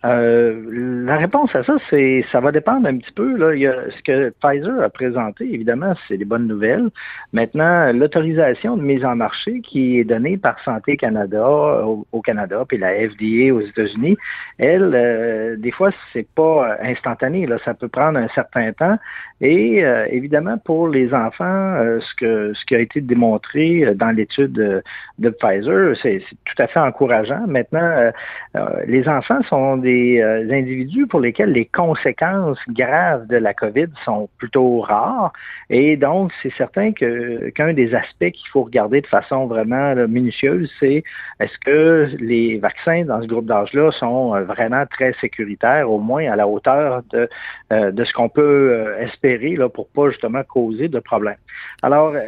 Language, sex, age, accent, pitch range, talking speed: French, male, 50-69, Canadian, 115-155 Hz, 170 wpm